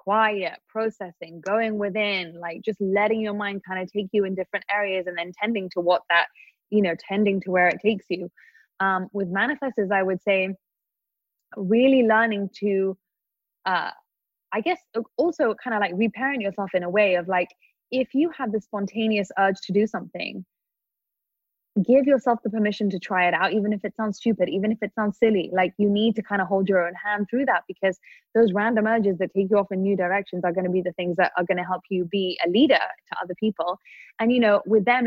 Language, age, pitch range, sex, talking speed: English, 20-39, 185-225 Hz, female, 215 wpm